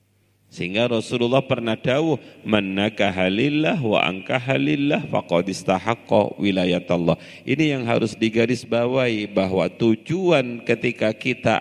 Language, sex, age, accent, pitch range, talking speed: Indonesian, male, 40-59, native, 100-140 Hz, 110 wpm